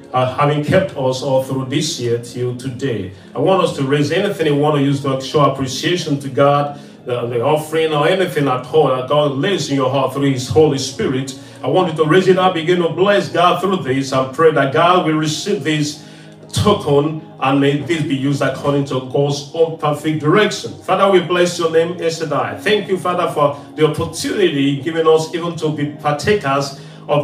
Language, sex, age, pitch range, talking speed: English, male, 40-59, 140-160 Hz, 205 wpm